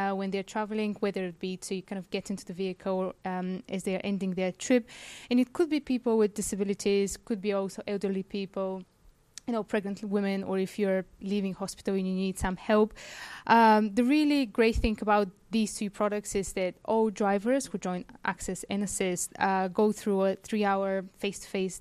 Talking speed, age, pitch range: 195 wpm, 20-39, 190-215 Hz